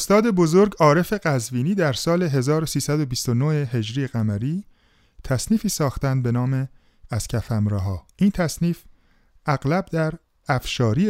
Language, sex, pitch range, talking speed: Persian, male, 105-150 Hz, 110 wpm